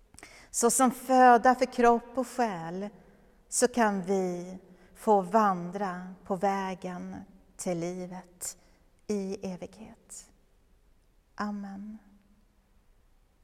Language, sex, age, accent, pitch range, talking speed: Swedish, female, 40-59, native, 195-230 Hz, 85 wpm